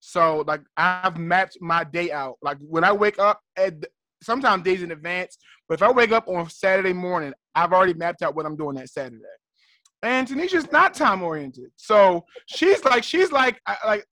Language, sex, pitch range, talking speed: English, male, 180-240 Hz, 195 wpm